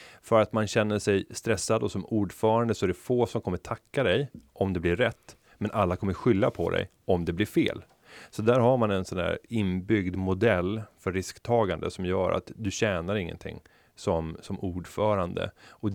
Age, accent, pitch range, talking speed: 30-49, native, 90-105 Hz, 195 wpm